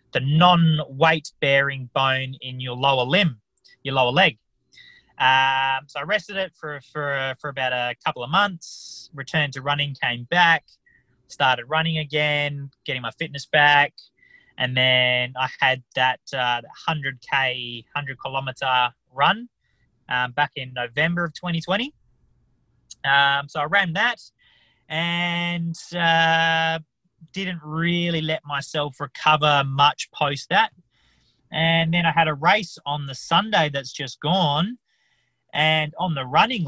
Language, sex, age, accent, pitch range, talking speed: English, male, 20-39, Australian, 130-165 Hz, 140 wpm